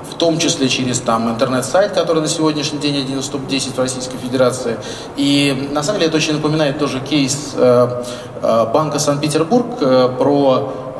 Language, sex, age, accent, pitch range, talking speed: Russian, male, 20-39, native, 130-160 Hz, 170 wpm